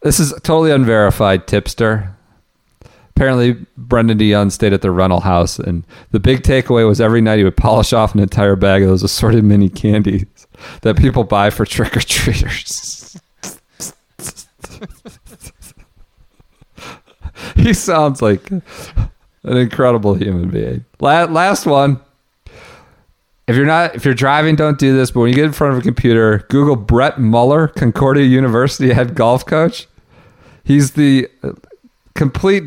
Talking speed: 140 wpm